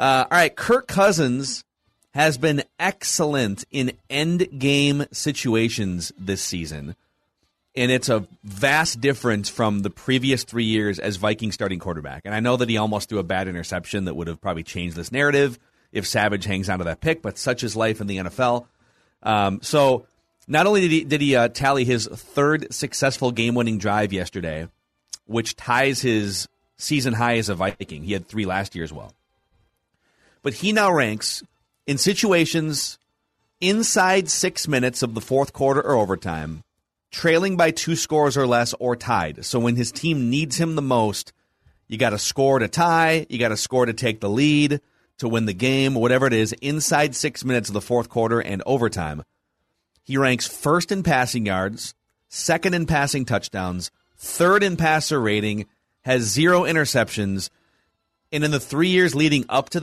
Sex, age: male, 30-49